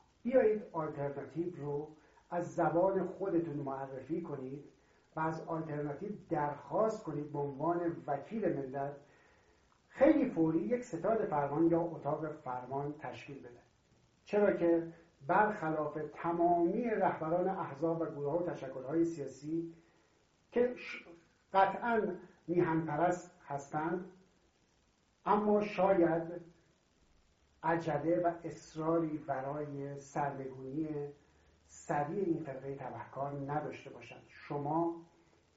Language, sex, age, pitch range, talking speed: Persian, male, 60-79, 140-175 Hz, 95 wpm